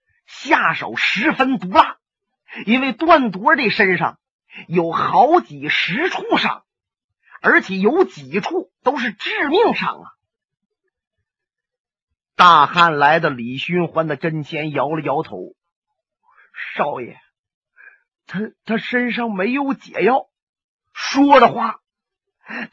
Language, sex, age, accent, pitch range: Chinese, male, 30-49, native, 180-280 Hz